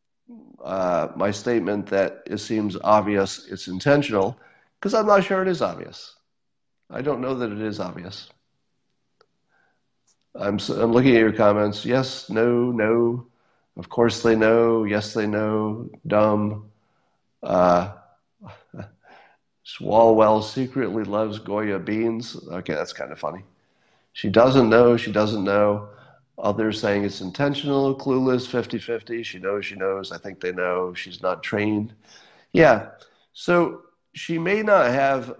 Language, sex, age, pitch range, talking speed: English, male, 50-69, 100-130 Hz, 135 wpm